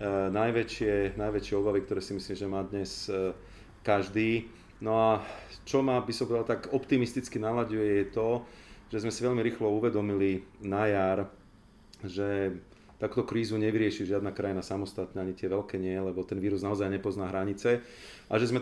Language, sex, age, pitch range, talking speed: Slovak, male, 40-59, 100-110 Hz, 160 wpm